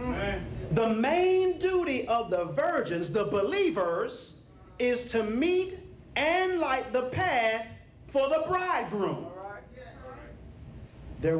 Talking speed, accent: 100 wpm, American